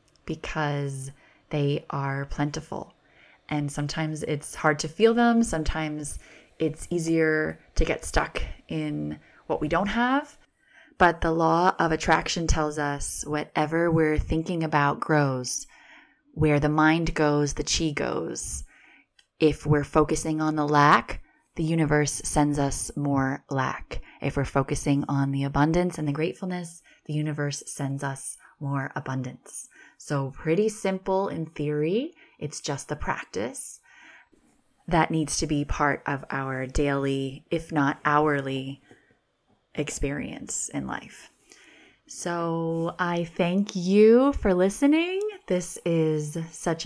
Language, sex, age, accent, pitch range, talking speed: English, female, 20-39, American, 145-180 Hz, 130 wpm